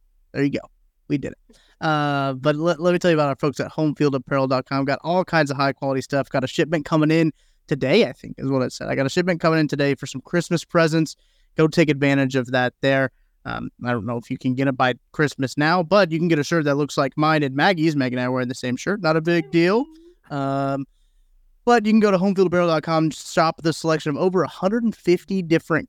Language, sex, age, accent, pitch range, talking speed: English, male, 20-39, American, 135-170 Hz, 240 wpm